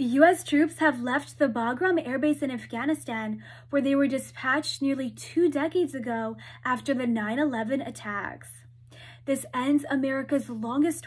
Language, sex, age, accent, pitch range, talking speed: English, female, 10-29, American, 225-290 Hz, 145 wpm